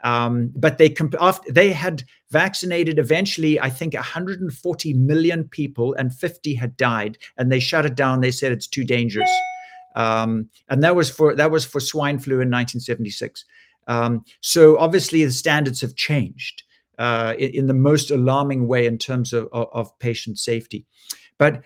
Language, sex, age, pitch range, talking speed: English, male, 60-79, 125-155 Hz, 165 wpm